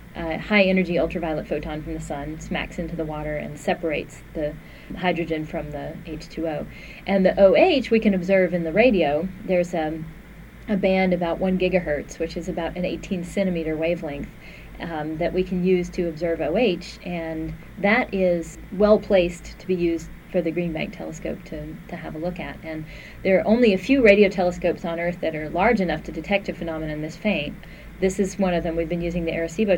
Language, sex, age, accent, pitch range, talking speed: English, female, 30-49, American, 160-185 Hz, 200 wpm